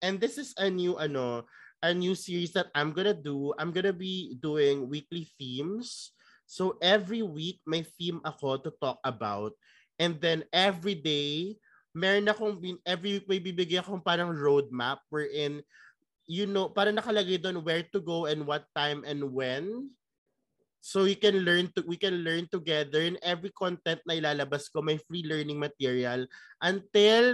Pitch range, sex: 145-190 Hz, male